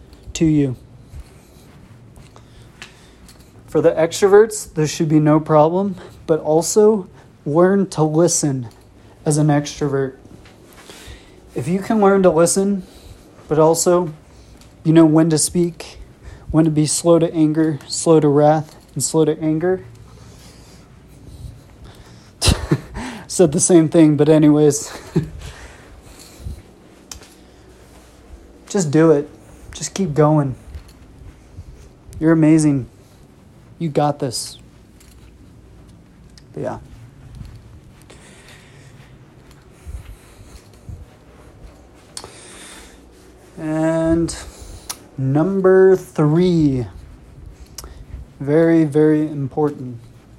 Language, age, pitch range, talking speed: English, 30-49, 120-165 Hz, 80 wpm